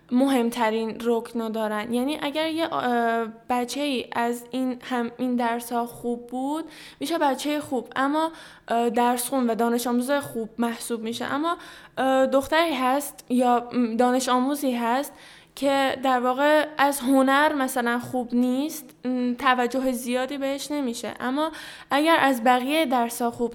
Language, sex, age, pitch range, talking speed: Persian, female, 10-29, 235-280 Hz, 135 wpm